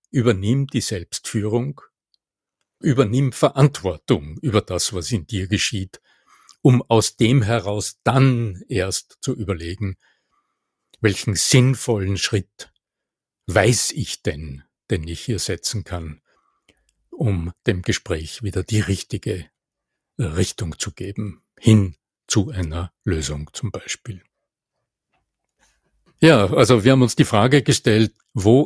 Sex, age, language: male, 60-79, German